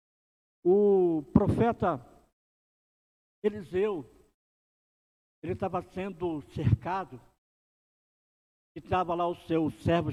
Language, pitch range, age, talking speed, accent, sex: Portuguese, 130-190 Hz, 60-79, 75 wpm, Brazilian, male